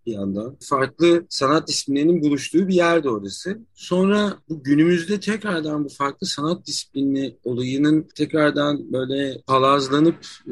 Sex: male